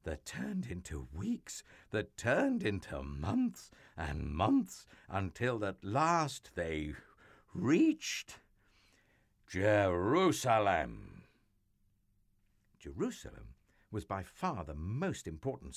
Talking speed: 90 wpm